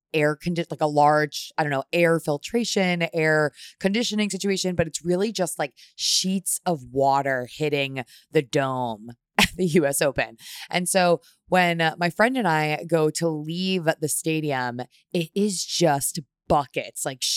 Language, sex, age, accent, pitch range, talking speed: English, female, 20-39, American, 150-185 Hz, 155 wpm